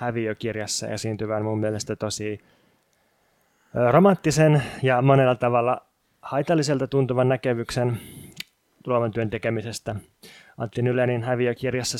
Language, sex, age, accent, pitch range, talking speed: Finnish, male, 20-39, native, 110-125 Hz, 90 wpm